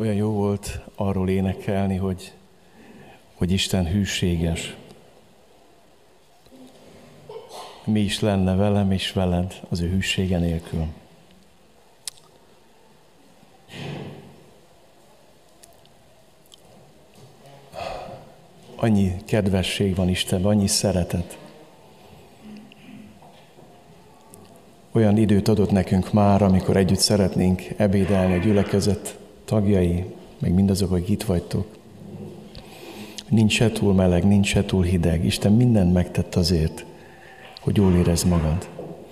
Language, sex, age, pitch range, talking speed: Hungarian, male, 60-79, 90-105 Hz, 85 wpm